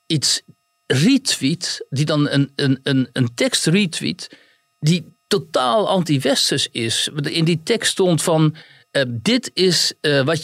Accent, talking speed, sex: Dutch, 125 wpm, male